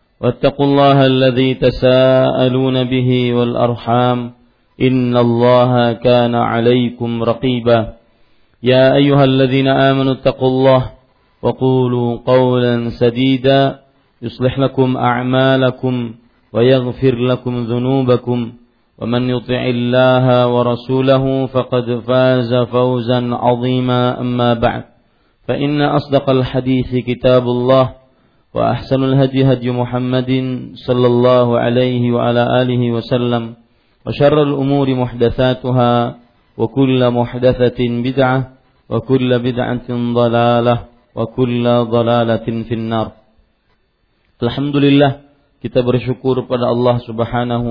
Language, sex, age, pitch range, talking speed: Malay, male, 40-59, 120-130 Hz, 90 wpm